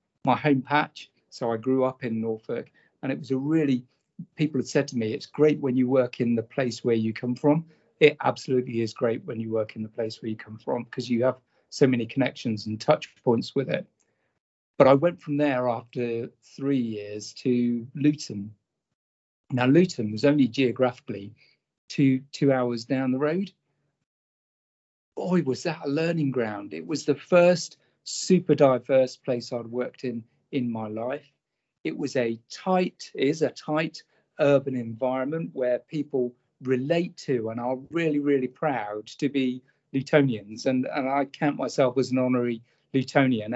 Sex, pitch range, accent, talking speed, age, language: male, 120-145 Hz, British, 175 wpm, 40-59, English